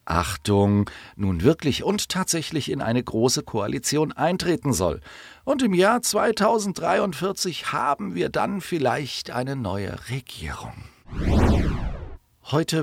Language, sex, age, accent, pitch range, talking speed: German, male, 40-59, German, 90-125 Hz, 110 wpm